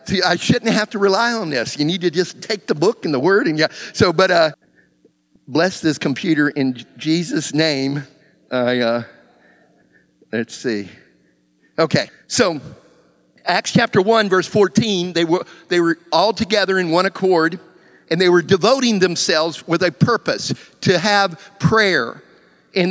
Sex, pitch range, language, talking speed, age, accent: male, 175-220 Hz, English, 160 wpm, 50-69, American